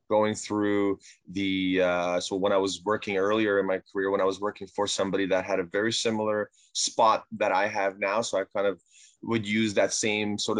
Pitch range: 100-120 Hz